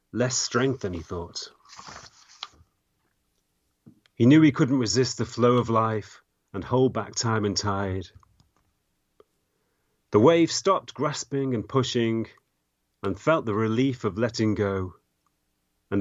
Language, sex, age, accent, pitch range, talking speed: English, male, 40-59, British, 100-130 Hz, 125 wpm